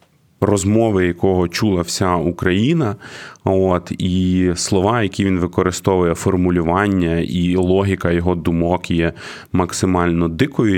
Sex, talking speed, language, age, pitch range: male, 105 wpm, Ukrainian, 20-39, 90-110 Hz